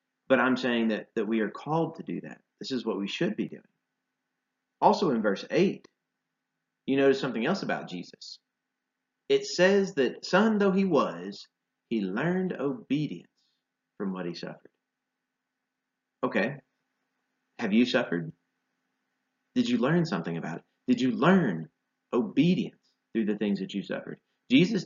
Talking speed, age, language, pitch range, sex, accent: 150 wpm, 40-59, English, 105-150 Hz, male, American